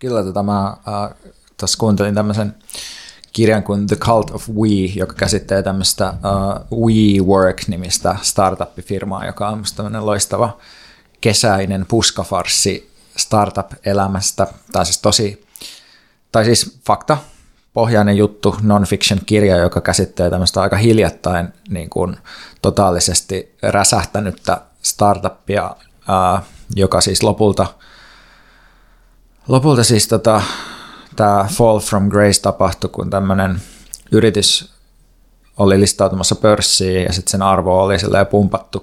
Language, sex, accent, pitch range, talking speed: Finnish, male, native, 95-105 Hz, 110 wpm